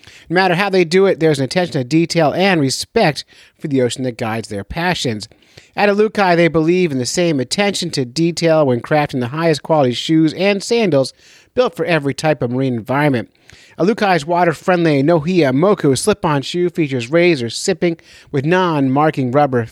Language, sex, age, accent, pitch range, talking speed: English, male, 30-49, American, 120-160 Hz, 175 wpm